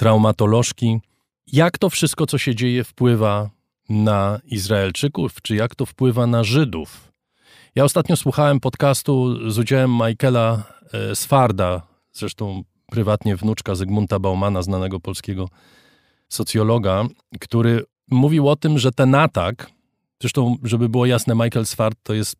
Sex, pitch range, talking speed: male, 105-130 Hz, 125 wpm